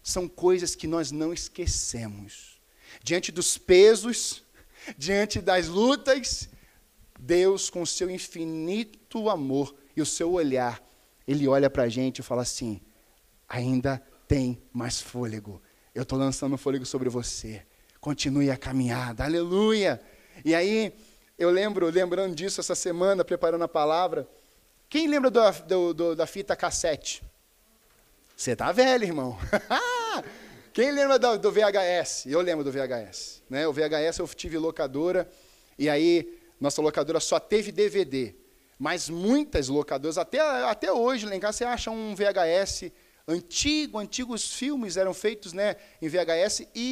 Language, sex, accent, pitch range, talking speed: Portuguese, male, Brazilian, 145-215 Hz, 140 wpm